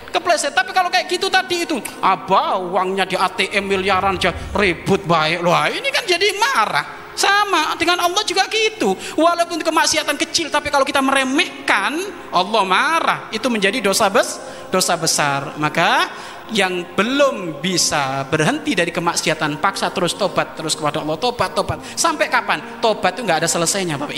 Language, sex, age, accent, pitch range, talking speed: Indonesian, male, 30-49, native, 175-285 Hz, 155 wpm